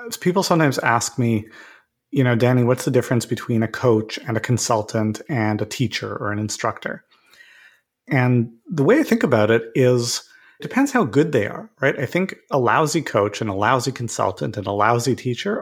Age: 30-49